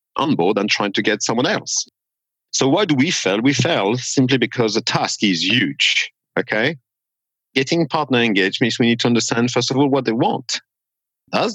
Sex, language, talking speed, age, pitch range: male, English, 190 wpm, 50-69, 110-130 Hz